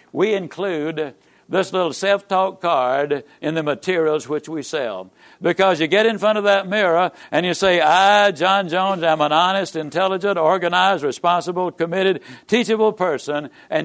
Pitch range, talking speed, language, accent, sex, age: 150-205 Hz, 160 wpm, English, American, male, 60-79